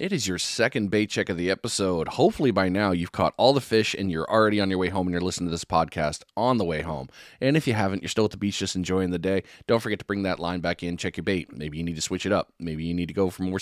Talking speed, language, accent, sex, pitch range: 315 wpm, English, American, male, 85-105 Hz